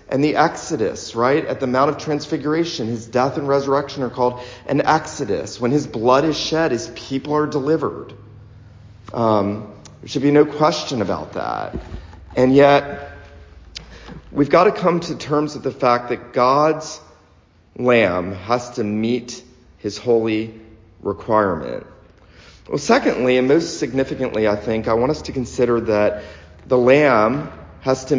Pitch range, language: 105-145 Hz, English